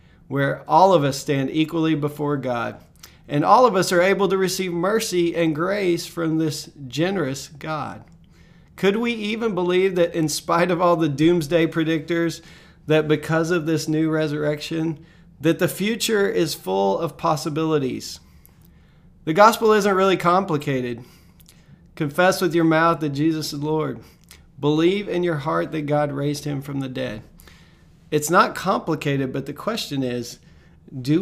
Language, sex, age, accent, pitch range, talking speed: English, male, 40-59, American, 140-175 Hz, 155 wpm